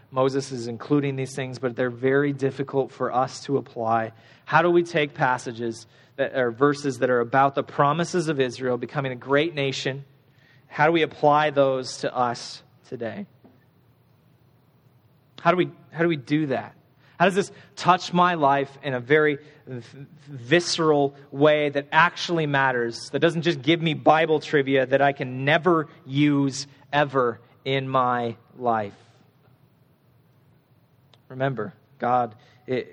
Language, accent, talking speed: English, American, 150 wpm